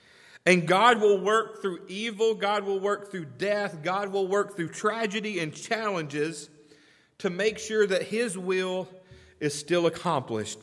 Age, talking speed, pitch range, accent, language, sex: 40-59, 150 wpm, 135-195 Hz, American, English, male